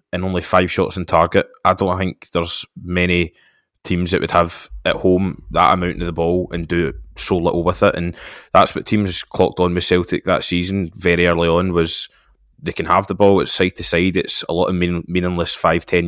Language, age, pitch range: English, 20-39, 85-100 Hz